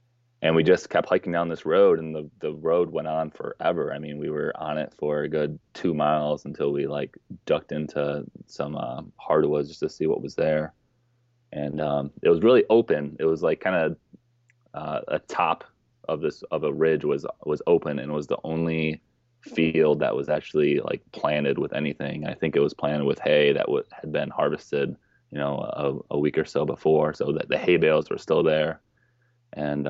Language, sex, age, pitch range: English, male, 20-39, 75-120 Hz